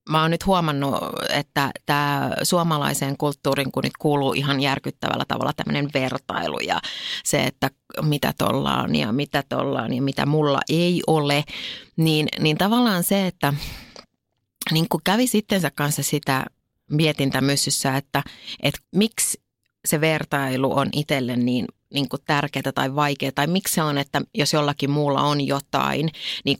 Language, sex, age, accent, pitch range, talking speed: Finnish, female, 30-49, native, 140-180 Hz, 145 wpm